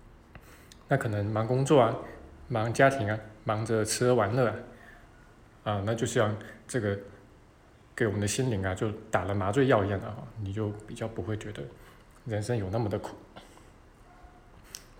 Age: 20-39